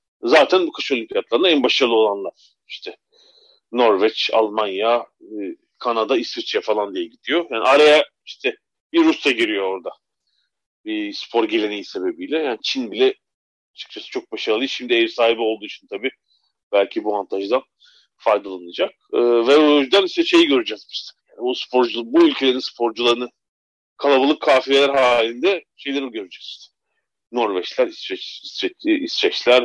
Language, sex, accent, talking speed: Turkish, male, native, 130 wpm